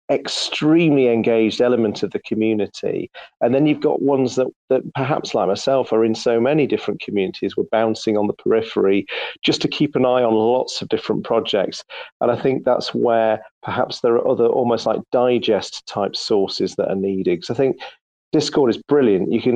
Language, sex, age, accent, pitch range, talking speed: English, male, 40-59, British, 110-130 Hz, 190 wpm